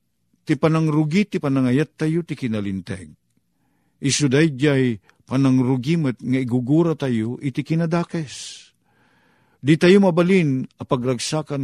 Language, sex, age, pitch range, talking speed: Filipino, male, 50-69, 110-155 Hz, 120 wpm